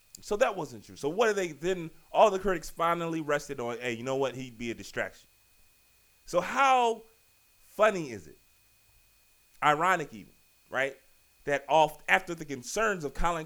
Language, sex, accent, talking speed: English, male, American, 170 wpm